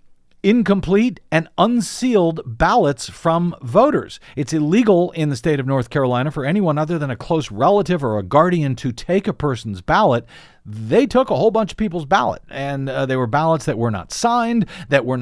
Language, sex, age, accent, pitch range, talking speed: English, male, 50-69, American, 130-175 Hz, 190 wpm